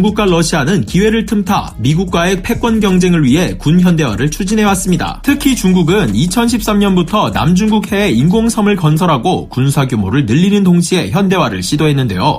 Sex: male